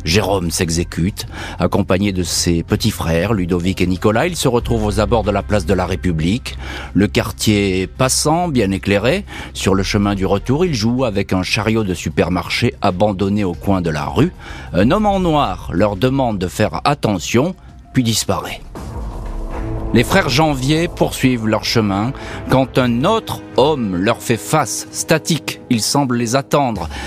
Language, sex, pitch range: French, male, 100-125 Hz